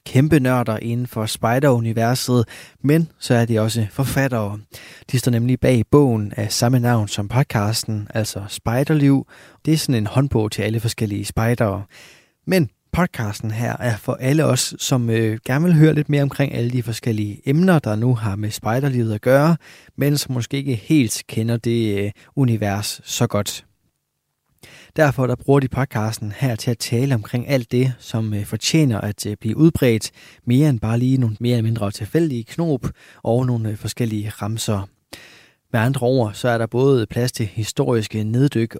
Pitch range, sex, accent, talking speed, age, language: 110-135 Hz, male, native, 170 wpm, 20-39, Danish